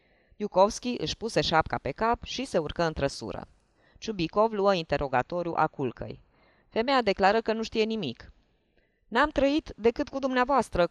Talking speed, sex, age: 145 wpm, female, 20-39